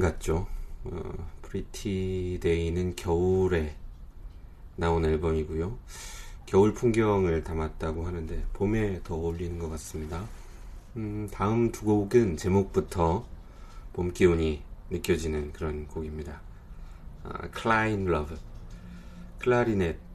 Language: Korean